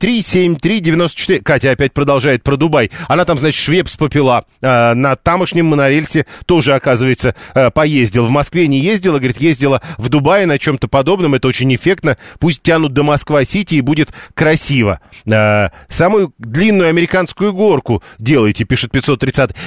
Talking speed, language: 135 wpm, Russian